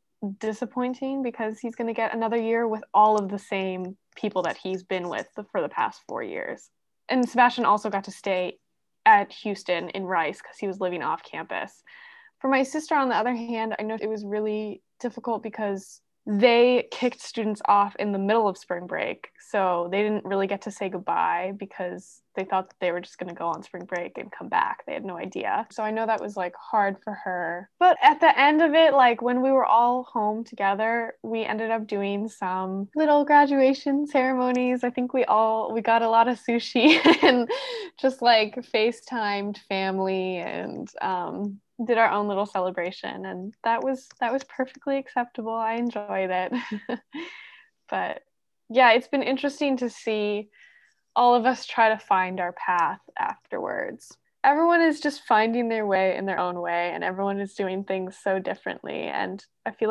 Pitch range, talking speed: 195-260 Hz, 190 wpm